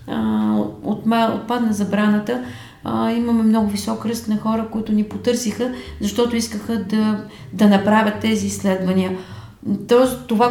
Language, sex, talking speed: Bulgarian, female, 115 wpm